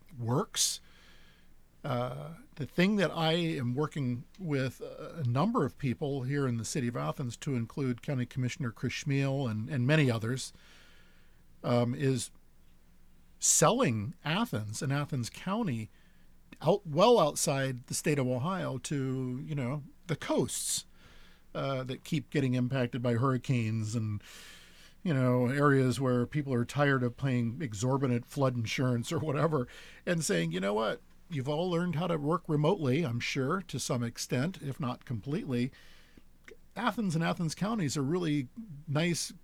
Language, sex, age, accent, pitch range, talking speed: English, male, 50-69, American, 120-155 Hz, 150 wpm